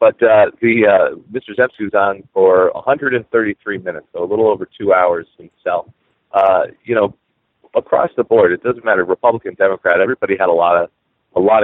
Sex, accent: male, American